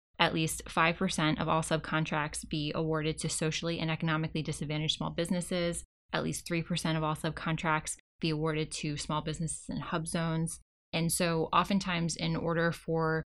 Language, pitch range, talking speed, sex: English, 155-175 Hz, 160 wpm, female